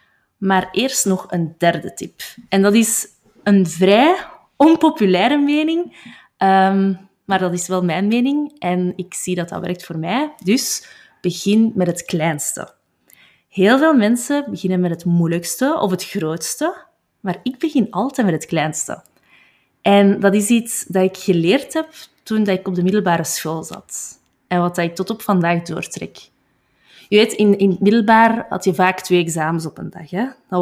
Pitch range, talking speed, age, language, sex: 175-225 Hz, 170 wpm, 20-39, Dutch, female